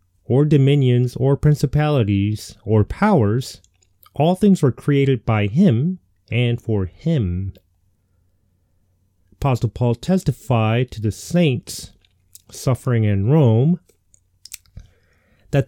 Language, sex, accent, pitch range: English, male, American, 95-145 Hz